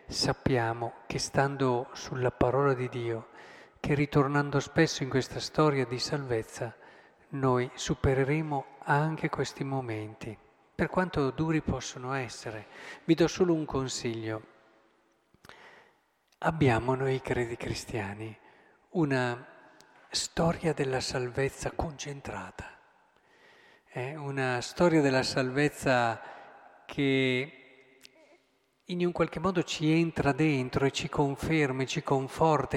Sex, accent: male, native